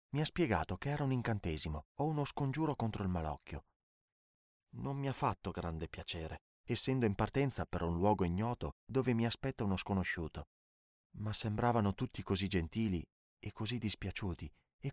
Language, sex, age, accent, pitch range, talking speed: Italian, male, 30-49, native, 85-110 Hz, 160 wpm